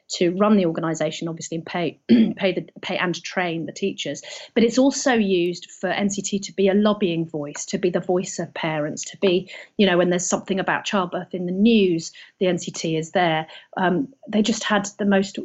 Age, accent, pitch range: 40-59, British, 175-205 Hz